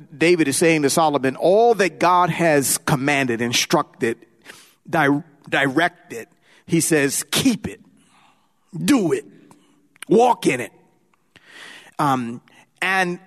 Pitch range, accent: 155-235 Hz, American